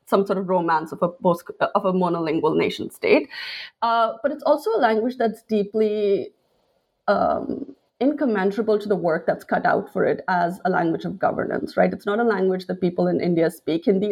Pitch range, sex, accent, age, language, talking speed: 185-230 Hz, female, Indian, 20-39, English, 185 wpm